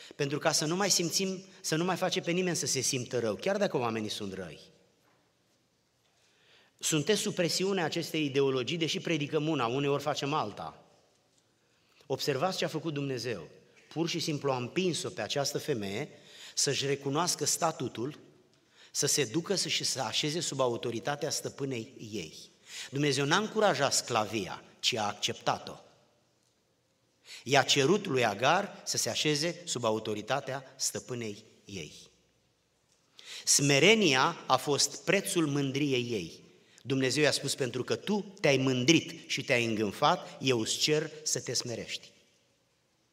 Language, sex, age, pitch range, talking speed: Romanian, male, 30-49, 125-165 Hz, 140 wpm